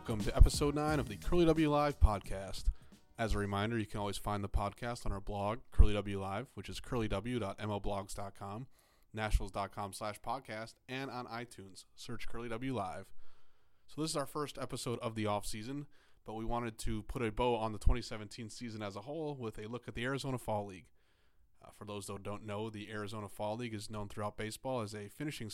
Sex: male